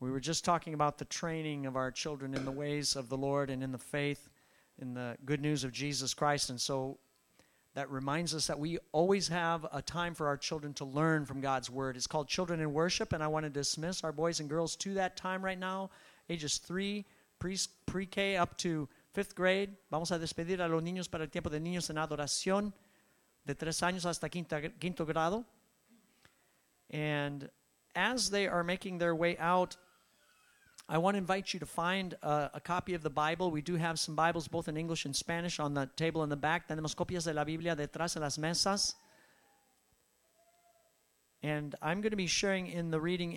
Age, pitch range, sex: 50-69, 145-180 Hz, male